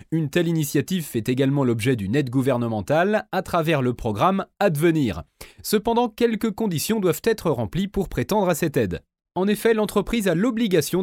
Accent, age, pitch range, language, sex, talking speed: French, 30-49, 135-205 Hz, French, male, 165 wpm